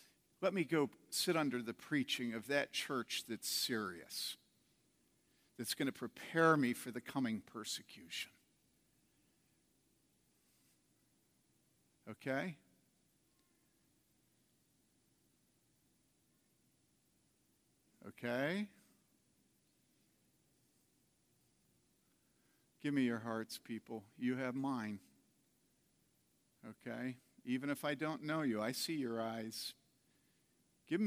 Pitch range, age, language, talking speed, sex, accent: 110-155 Hz, 50-69, English, 85 wpm, male, American